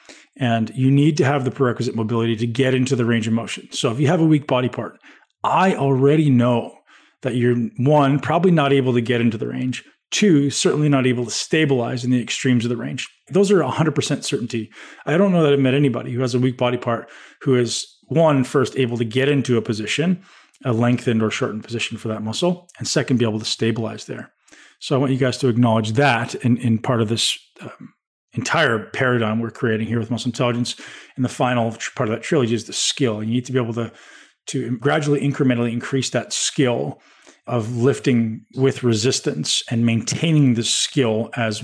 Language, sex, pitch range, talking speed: English, male, 115-140 Hz, 210 wpm